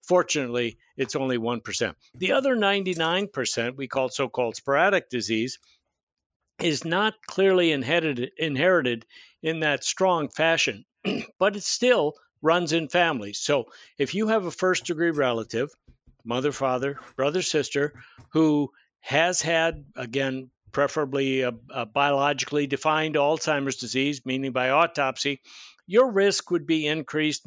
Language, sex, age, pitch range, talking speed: English, male, 60-79, 130-160 Hz, 120 wpm